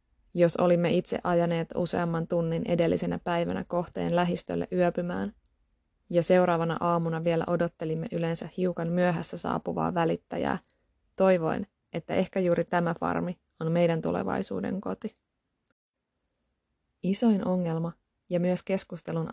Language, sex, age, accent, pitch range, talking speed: Finnish, female, 20-39, native, 165-185 Hz, 110 wpm